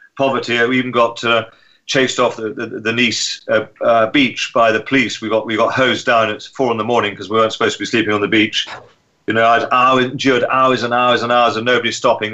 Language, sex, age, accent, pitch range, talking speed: English, male, 40-59, British, 110-130 Hz, 245 wpm